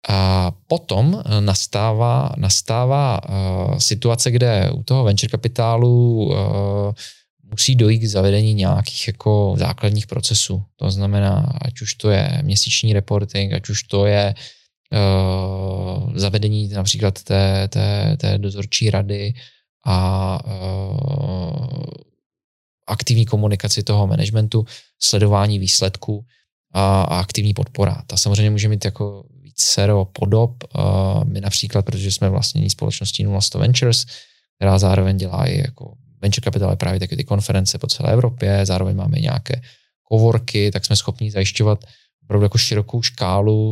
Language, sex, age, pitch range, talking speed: Slovak, male, 20-39, 100-120 Hz, 120 wpm